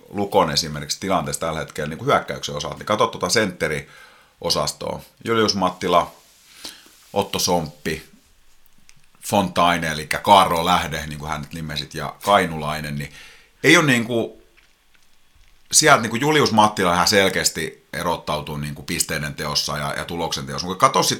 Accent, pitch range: native, 75-100 Hz